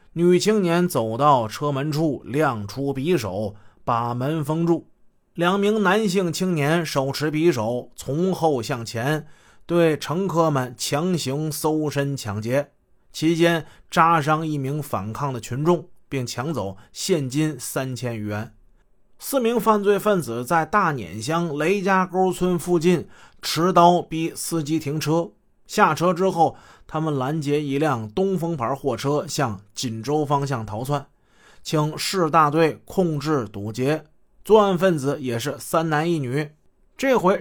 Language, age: Chinese, 30-49